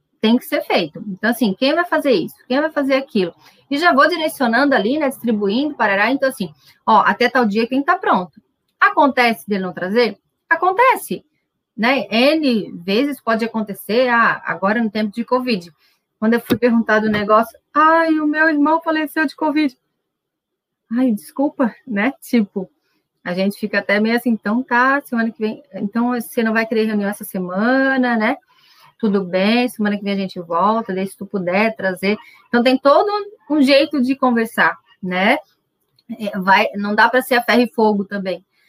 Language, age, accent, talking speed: Portuguese, 20-39, Brazilian, 180 wpm